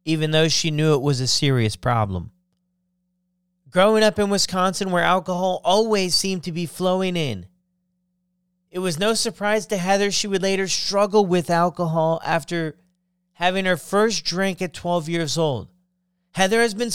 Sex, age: male, 30-49